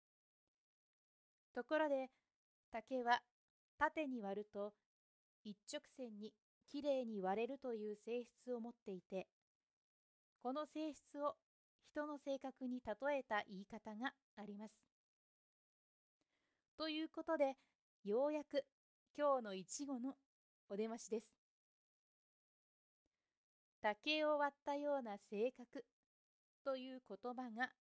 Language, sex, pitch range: Japanese, female, 215-275 Hz